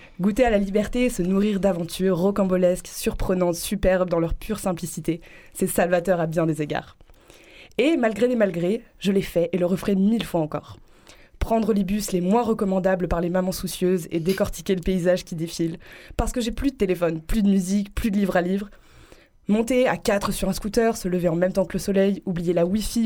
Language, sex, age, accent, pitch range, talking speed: French, female, 20-39, French, 175-210 Hz, 210 wpm